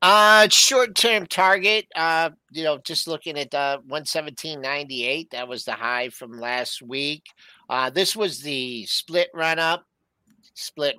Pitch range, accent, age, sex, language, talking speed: 130-185 Hz, American, 50-69, male, English, 140 wpm